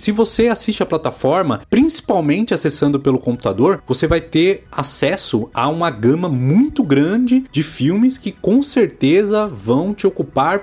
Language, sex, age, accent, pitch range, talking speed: Portuguese, male, 30-49, Brazilian, 120-190 Hz, 145 wpm